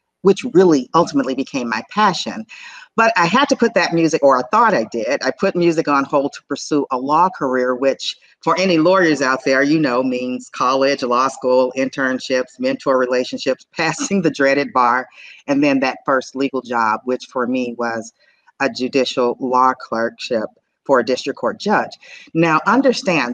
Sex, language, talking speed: female, English, 175 wpm